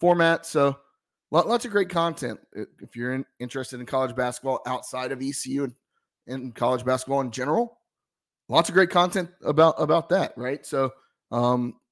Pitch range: 125-155 Hz